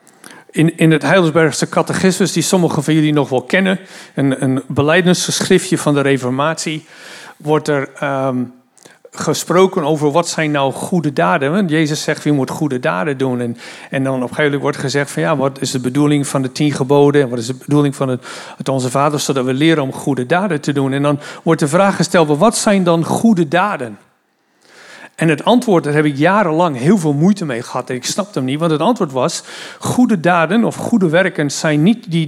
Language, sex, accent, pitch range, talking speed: Dutch, male, Dutch, 140-175 Hz, 205 wpm